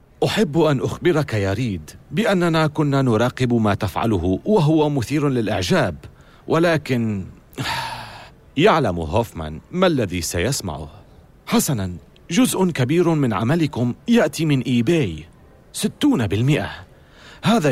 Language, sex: Arabic, male